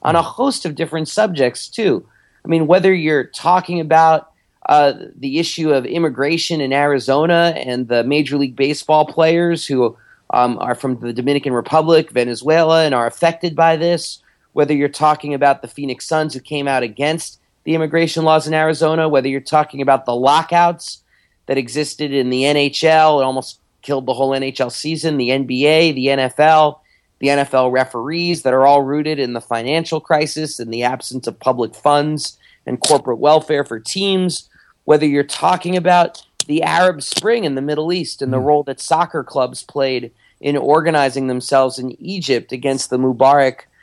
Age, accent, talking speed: 40-59, American, 170 wpm